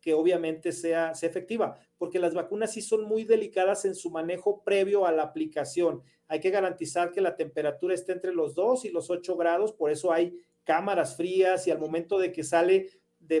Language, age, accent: Spanish, 40-59, Mexican